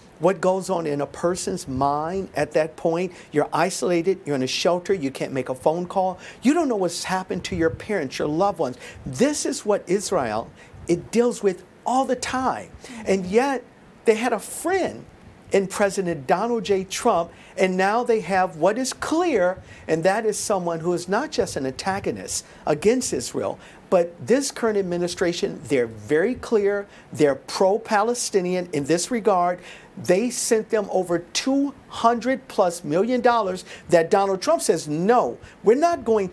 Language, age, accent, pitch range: English, 50-69, American, 170-225 Hz